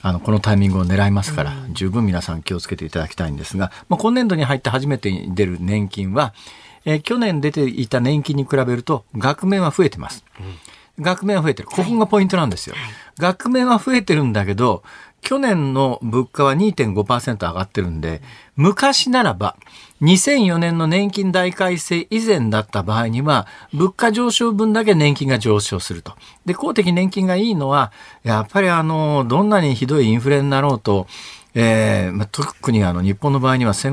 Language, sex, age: Japanese, male, 50-69